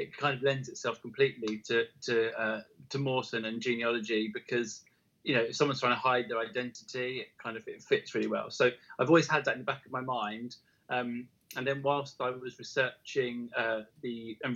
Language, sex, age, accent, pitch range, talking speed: English, male, 20-39, British, 115-135 Hz, 210 wpm